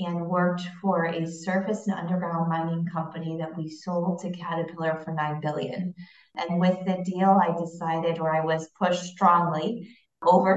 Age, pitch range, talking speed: 30-49, 160-175 Hz, 165 wpm